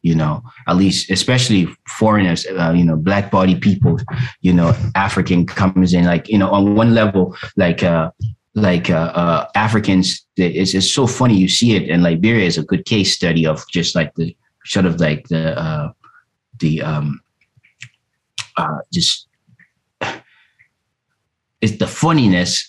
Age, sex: 30-49, male